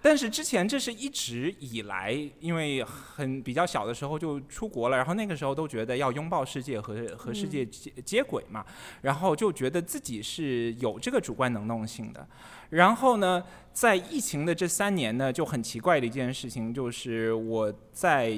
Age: 20-39